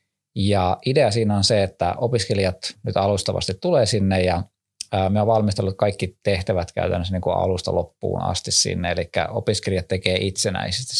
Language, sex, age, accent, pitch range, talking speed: Finnish, male, 20-39, native, 90-105 Hz, 135 wpm